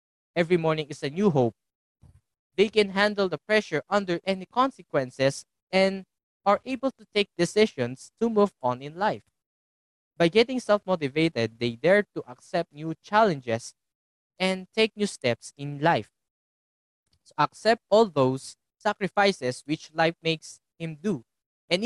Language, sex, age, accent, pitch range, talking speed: English, male, 20-39, Filipino, 125-200 Hz, 135 wpm